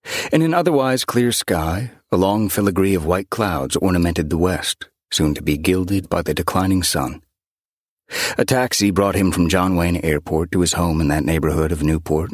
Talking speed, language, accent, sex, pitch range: 185 wpm, English, American, male, 80-100 Hz